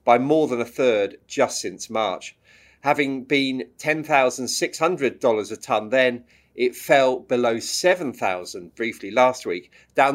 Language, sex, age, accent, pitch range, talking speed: English, male, 40-59, British, 115-155 Hz, 130 wpm